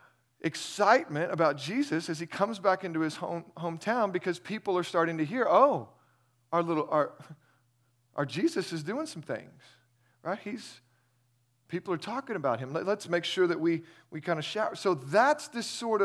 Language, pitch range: English, 140-185 Hz